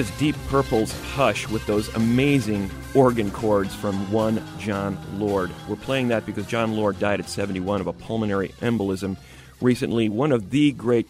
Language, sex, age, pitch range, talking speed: English, male, 40-59, 100-130 Hz, 160 wpm